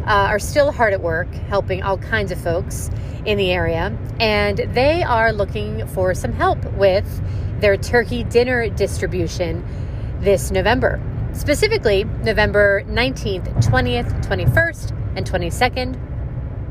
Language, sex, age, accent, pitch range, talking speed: English, female, 30-49, American, 105-130 Hz, 125 wpm